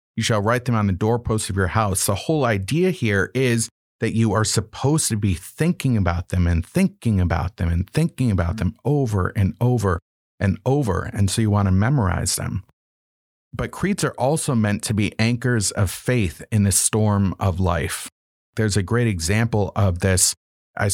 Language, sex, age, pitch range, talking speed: English, male, 30-49, 95-115 Hz, 190 wpm